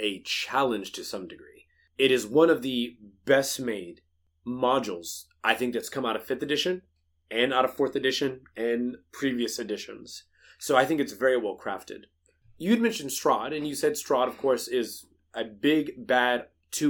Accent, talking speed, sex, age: American, 180 wpm, male, 30-49